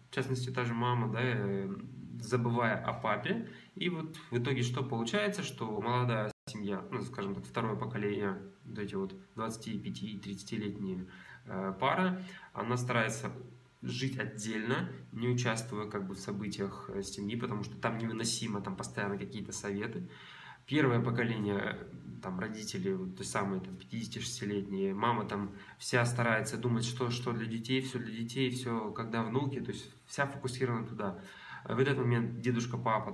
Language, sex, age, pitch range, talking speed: Russian, male, 20-39, 105-125 Hz, 145 wpm